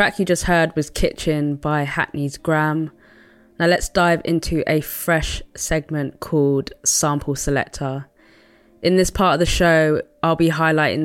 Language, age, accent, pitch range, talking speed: English, 20-39, British, 145-165 Hz, 150 wpm